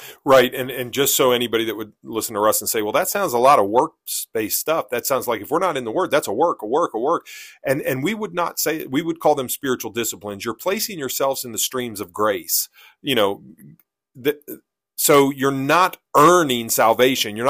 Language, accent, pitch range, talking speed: English, American, 115-140 Hz, 225 wpm